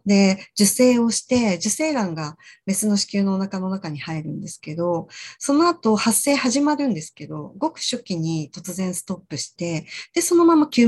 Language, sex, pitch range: Japanese, female, 165-250 Hz